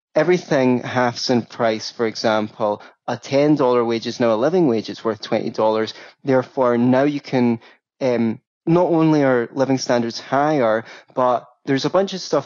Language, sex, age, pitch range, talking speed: English, male, 20-39, 115-145 Hz, 165 wpm